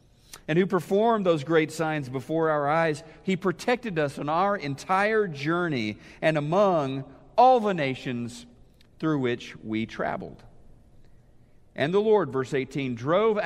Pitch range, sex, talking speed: 135-185 Hz, male, 140 wpm